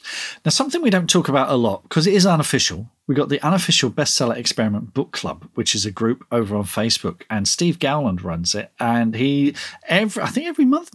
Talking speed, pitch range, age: 210 wpm, 115-150 Hz, 40-59